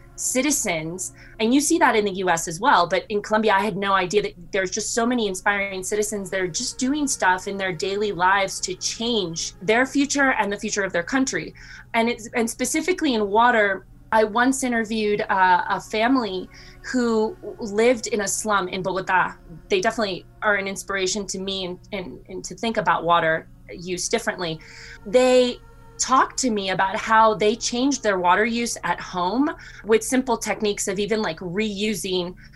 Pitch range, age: 190-235 Hz, 20-39